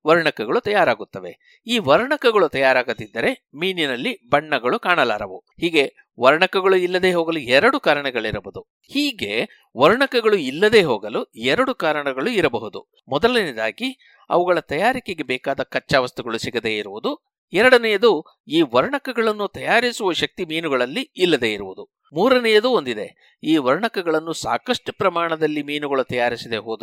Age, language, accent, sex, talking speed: 60-79, Kannada, native, male, 100 wpm